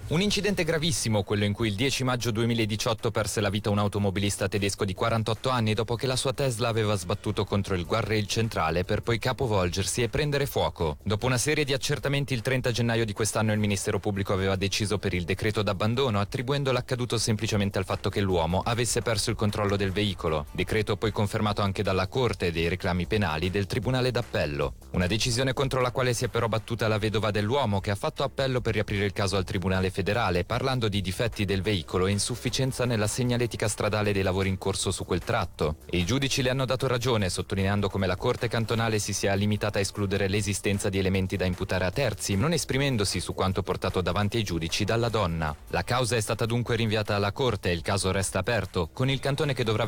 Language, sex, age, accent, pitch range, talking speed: Italian, male, 30-49, native, 100-120 Hz, 205 wpm